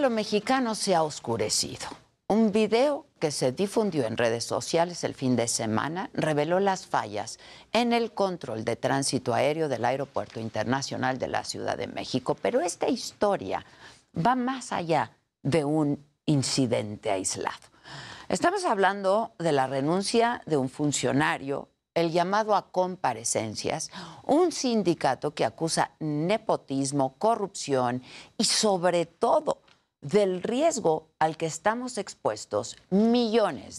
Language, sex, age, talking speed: Spanish, female, 50-69, 130 wpm